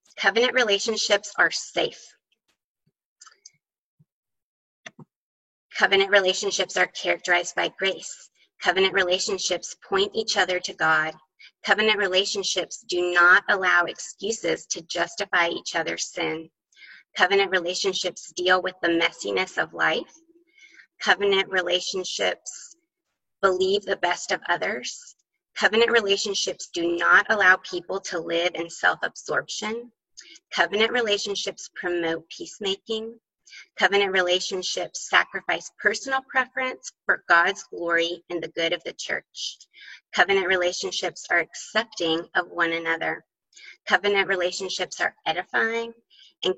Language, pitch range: English, 175-225 Hz